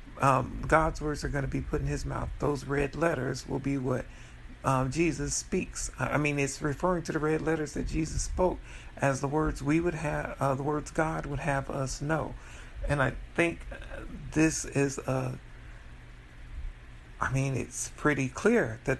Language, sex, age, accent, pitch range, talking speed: English, male, 50-69, American, 130-155 Hz, 180 wpm